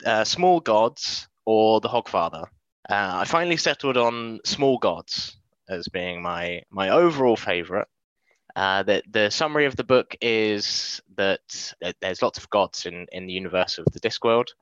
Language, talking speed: English, 160 wpm